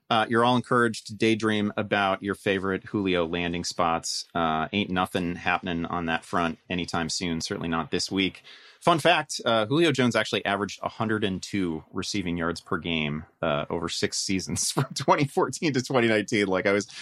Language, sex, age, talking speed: English, male, 30-49, 170 wpm